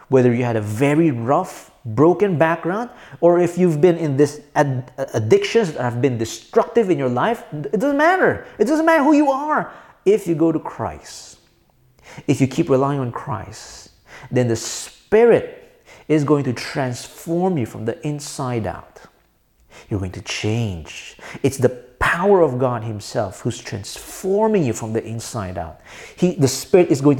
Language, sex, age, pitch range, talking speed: English, male, 40-59, 120-190 Hz, 170 wpm